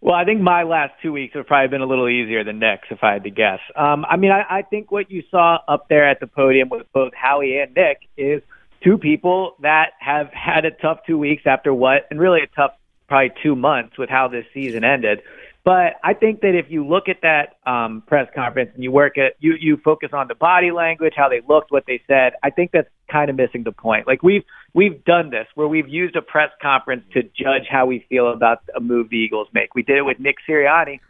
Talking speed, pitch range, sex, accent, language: 245 wpm, 130-165 Hz, male, American, English